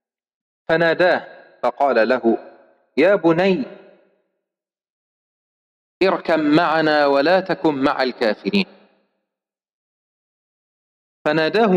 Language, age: Arabic, 40-59